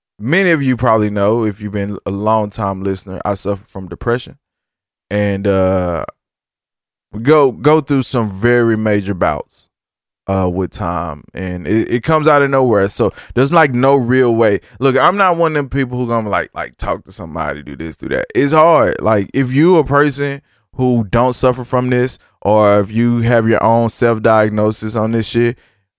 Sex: male